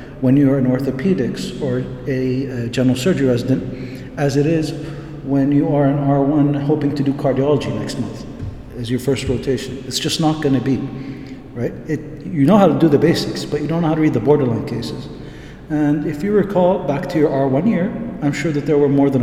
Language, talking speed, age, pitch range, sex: English, 210 wpm, 50-69, 130-150 Hz, male